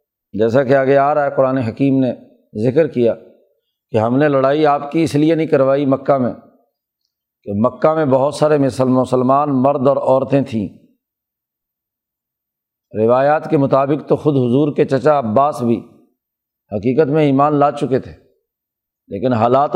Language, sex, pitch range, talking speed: Urdu, male, 130-150 Hz, 160 wpm